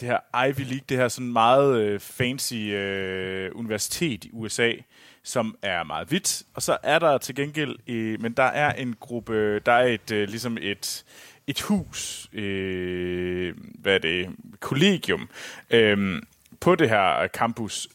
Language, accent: Danish, native